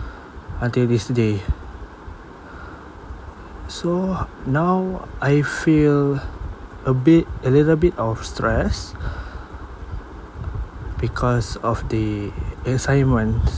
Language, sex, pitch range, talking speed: English, male, 95-130 Hz, 80 wpm